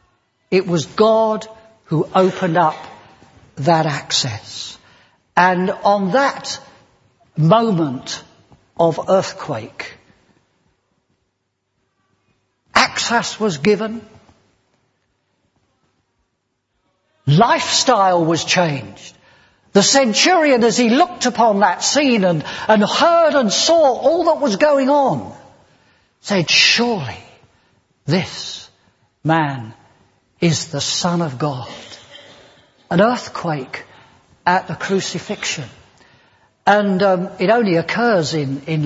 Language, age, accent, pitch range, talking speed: English, 60-79, British, 160-250 Hz, 90 wpm